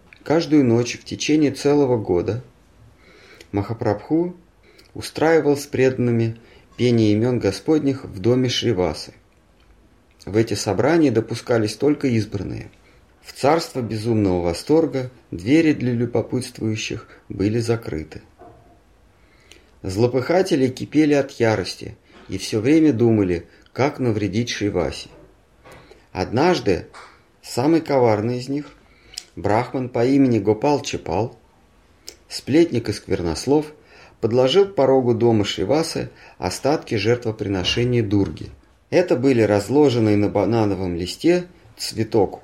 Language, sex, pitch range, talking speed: Russian, male, 100-140 Hz, 100 wpm